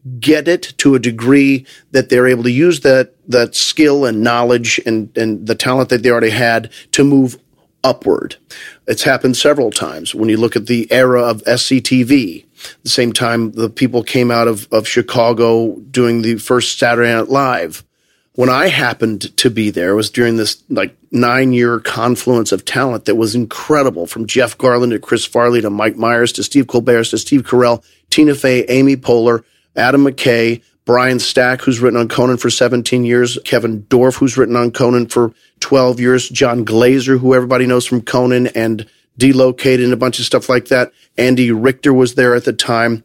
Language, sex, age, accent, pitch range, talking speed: English, male, 40-59, American, 115-130 Hz, 185 wpm